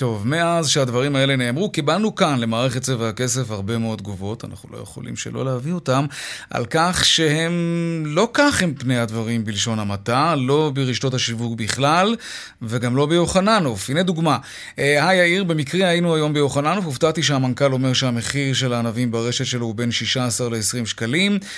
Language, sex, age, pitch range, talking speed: Hebrew, male, 30-49, 120-160 Hz, 160 wpm